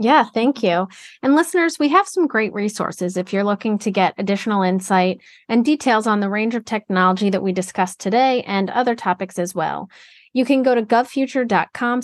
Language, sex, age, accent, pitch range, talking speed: English, female, 30-49, American, 190-260 Hz, 190 wpm